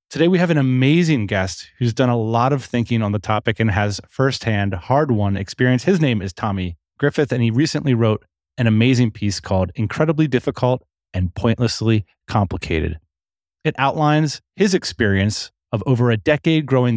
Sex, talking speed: male, 165 wpm